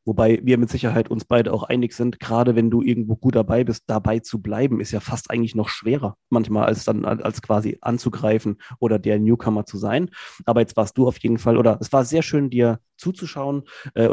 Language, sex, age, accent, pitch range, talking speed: German, male, 30-49, German, 110-125 Hz, 215 wpm